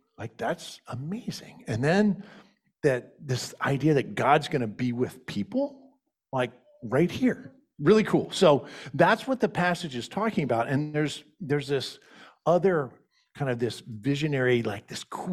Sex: male